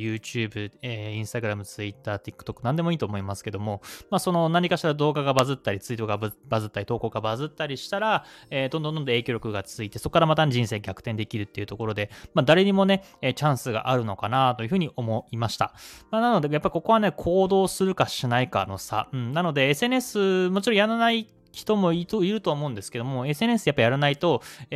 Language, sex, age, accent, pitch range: Japanese, male, 20-39, native, 110-160 Hz